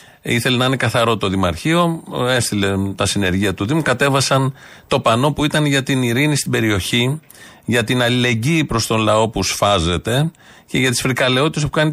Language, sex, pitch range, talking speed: Greek, male, 105-145 Hz, 175 wpm